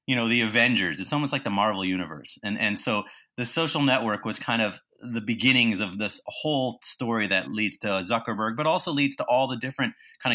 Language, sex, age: English, male, 30-49